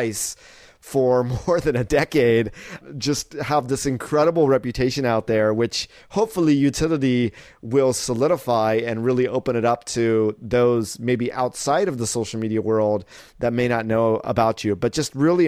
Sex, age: male, 30-49